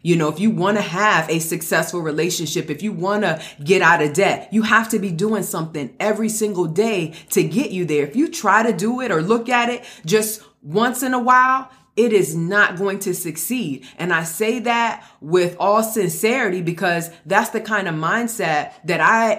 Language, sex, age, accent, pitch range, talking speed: English, female, 30-49, American, 180-230 Hz, 205 wpm